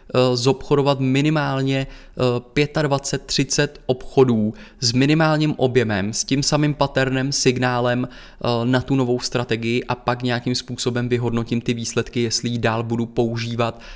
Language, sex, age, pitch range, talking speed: Czech, male, 20-39, 120-130 Hz, 120 wpm